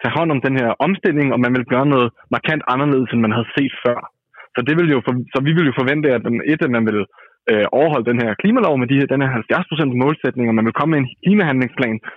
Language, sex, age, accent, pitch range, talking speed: Danish, male, 20-39, native, 120-145 Hz, 260 wpm